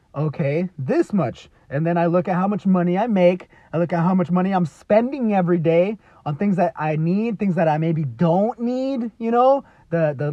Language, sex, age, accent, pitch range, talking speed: English, male, 30-49, American, 175-230 Hz, 220 wpm